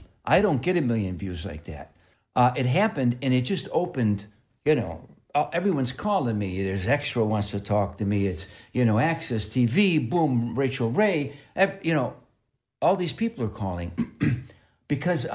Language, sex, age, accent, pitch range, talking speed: English, male, 60-79, American, 110-150 Hz, 175 wpm